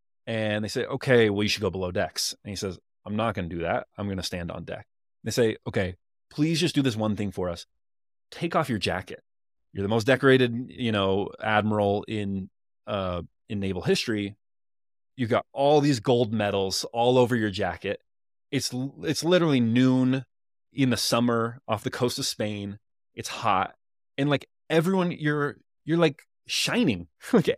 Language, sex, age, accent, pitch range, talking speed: English, male, 20-39, American, 95-130 Hz, 185 wpm